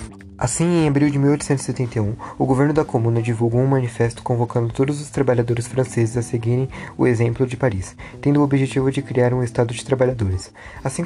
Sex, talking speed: male, 180 wpm